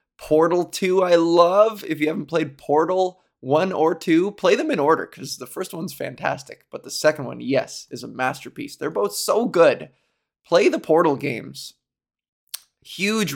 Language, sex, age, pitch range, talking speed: English, male, 20-39, 130-180 Hz, 170 wpm